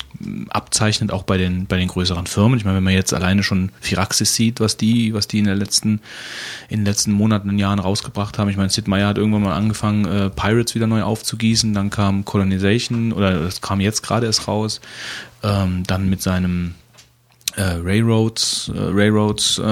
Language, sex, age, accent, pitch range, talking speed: German, male, 30-49, German, 95-110 Hz, 180 wpm